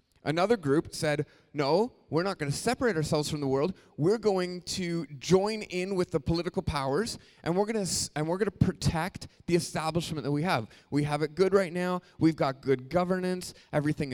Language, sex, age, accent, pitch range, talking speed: English, male, 30-49, American, 135-180 Hz, 185 wpm